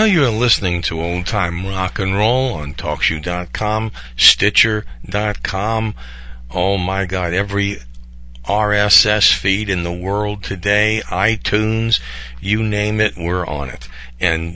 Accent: American